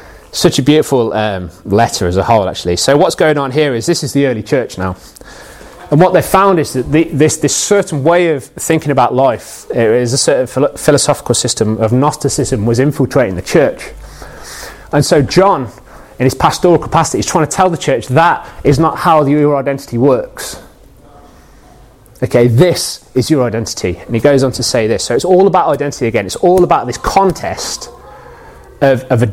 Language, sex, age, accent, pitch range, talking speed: English, male, 30-49, British, 120-165 Hz, 195 wpm